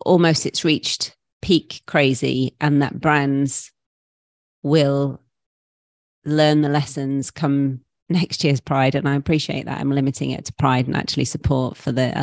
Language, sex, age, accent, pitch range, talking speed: English, female, 30-49, British, 130-145 Hz, 145 wpm